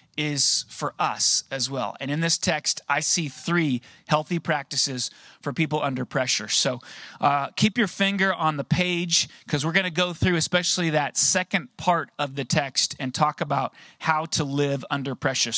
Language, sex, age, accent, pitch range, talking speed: English, male, 30-49, American, 150-185 Hz, 180 wpm